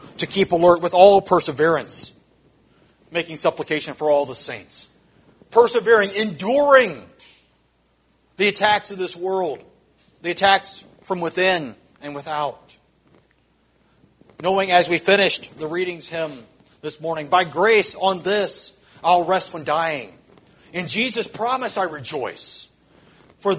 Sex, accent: male, American